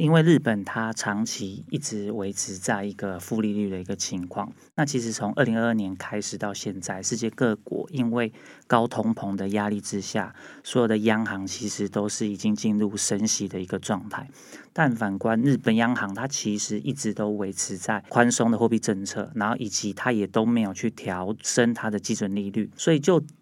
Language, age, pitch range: Chinese, 30-49, 100-125 Hz